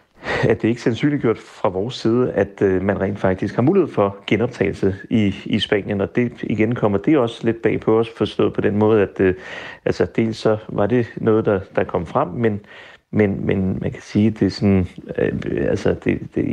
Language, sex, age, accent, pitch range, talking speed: Danish, male, 30-49, native, 100-120 Hz, 205 wpm